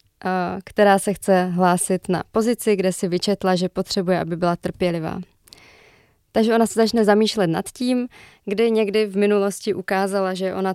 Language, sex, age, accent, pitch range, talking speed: Czech, female, 20-39, native, 185-210 Hz, 160 wpm